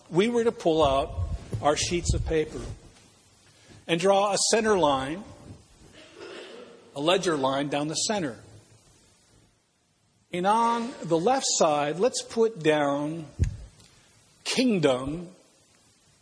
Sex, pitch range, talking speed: male, 145-195 Hz, 105 wpm